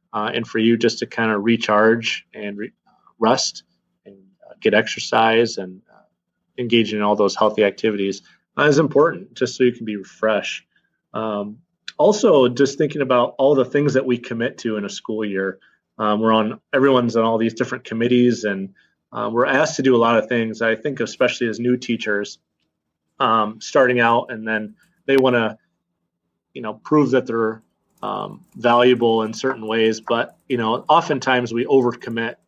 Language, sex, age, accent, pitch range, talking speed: English, male, 30-49, American, 105-125 Hz, 180 wpm